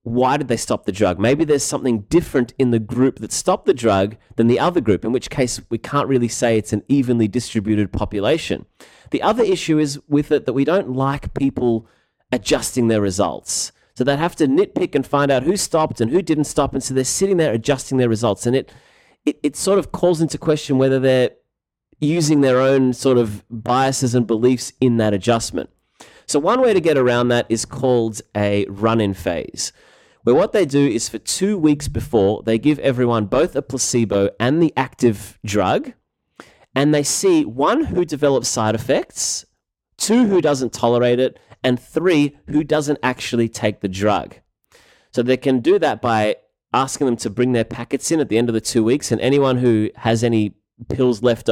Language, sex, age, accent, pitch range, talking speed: English, male, 30-49, Australian, 115-145 Hz, 200 wpm